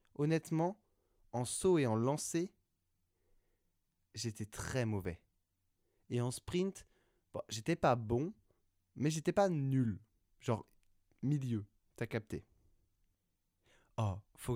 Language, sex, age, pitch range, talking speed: French, male, 20-39, 95-125 Hz, 105 wpm